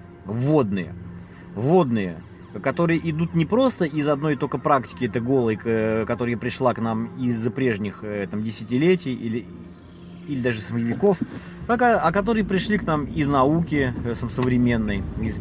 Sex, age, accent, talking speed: male, 30-49, native, 130 wpm